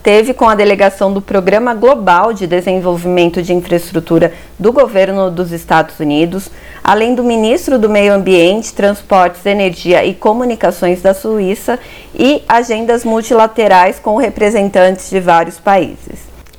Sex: female